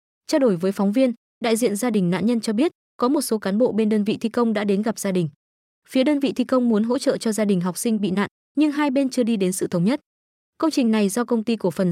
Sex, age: female, 20-39